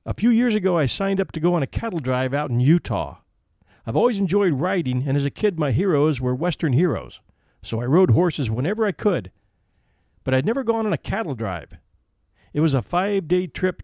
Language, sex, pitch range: English, male, 115-175 Hz